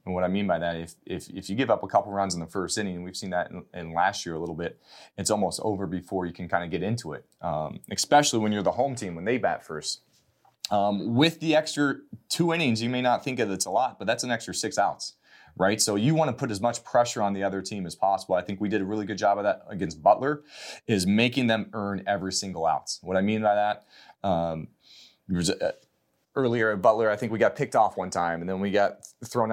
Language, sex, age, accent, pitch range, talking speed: English, male, 30-49, American, 95-120 Hz, 265 wpm